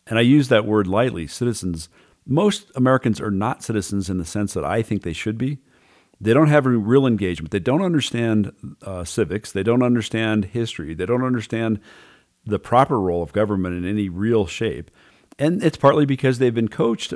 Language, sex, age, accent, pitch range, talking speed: English, male, 50-69, American, 100-125 Hz, 190 wpm